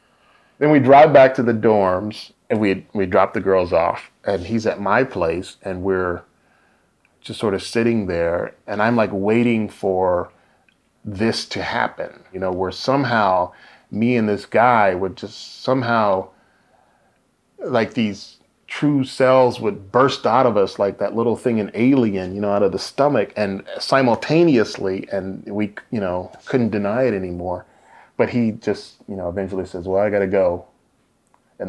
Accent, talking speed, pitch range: American, 165 wpm, 95-115 Hz